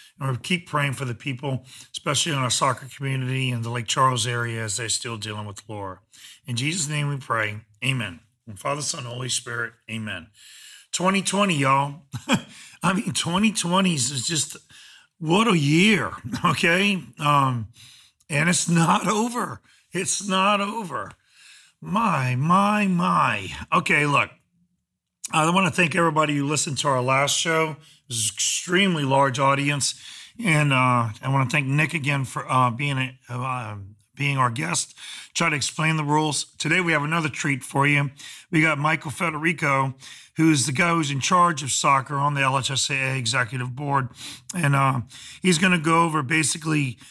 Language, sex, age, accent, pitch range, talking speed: English, male, 40-59, American, 130-165 Hz, 160 wpm